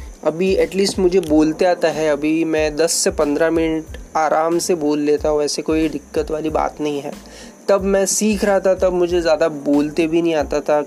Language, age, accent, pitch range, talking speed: Hindi, 20-39, native, 150-180 Hz, 205 wpm